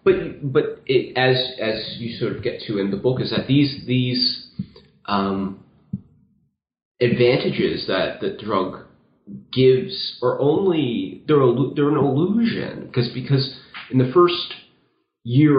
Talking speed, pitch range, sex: 135 wpm, 105-130 Hz, male